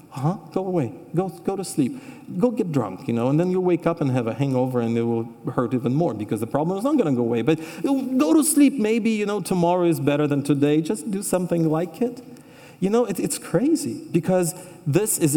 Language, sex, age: English, male, 40-59